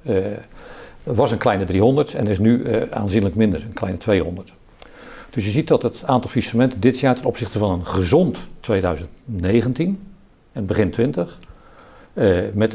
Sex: male